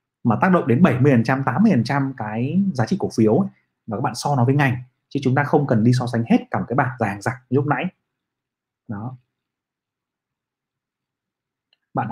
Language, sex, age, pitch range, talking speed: Vietnamese, male, 20-39, 115-135 Hz, 195 wpm